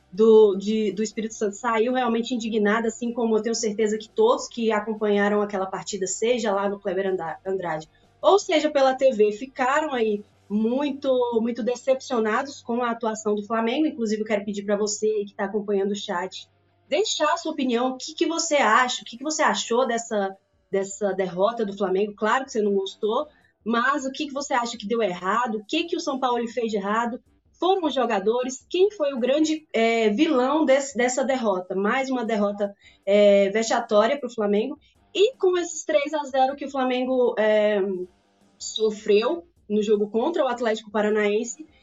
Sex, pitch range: female, 205-265 Hz